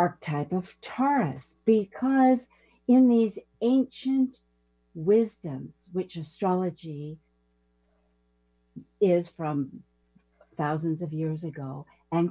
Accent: American